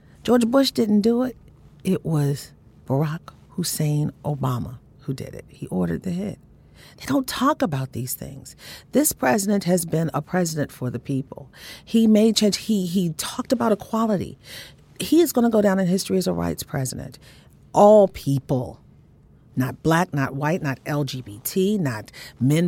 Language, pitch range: English, 150-225 Hz